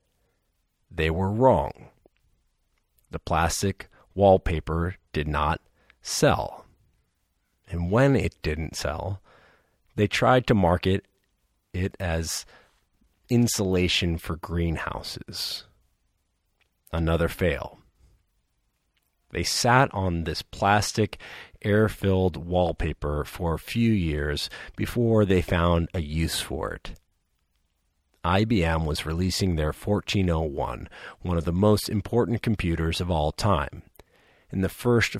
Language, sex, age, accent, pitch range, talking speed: English, male, 40-59, American, 80-100 Hz, 100 wpm